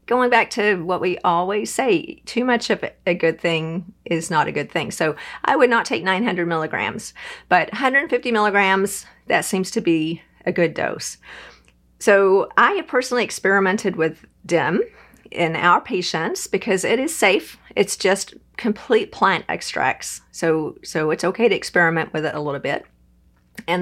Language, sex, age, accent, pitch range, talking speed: English, female, 40-59, American, 165-210 Hz, 165 wpm